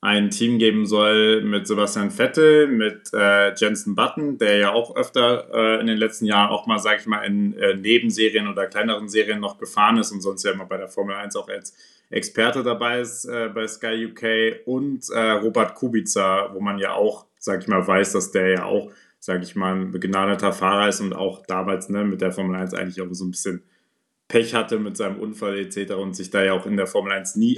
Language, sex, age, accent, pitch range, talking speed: German, male, 30-49, German, 100-120 Hz, 225 wpm